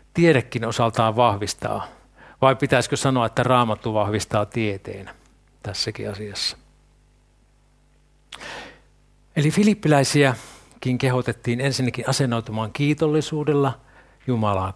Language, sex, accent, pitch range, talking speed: Finnish, male, native, 115-140 Hz, 75 wpm